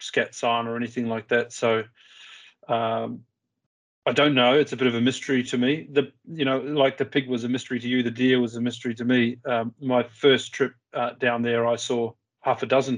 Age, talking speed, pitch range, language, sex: 30-49, 225 wpm, 120-130 Hz, English, male